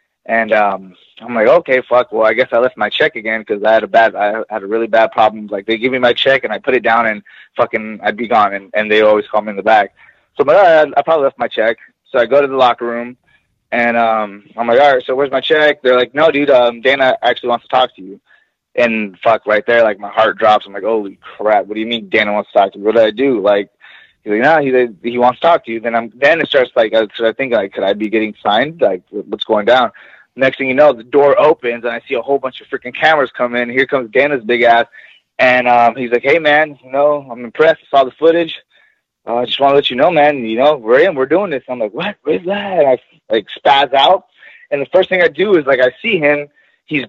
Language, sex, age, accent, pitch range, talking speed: English, male, 20-39, American, 115-150 Hz, 280 wpm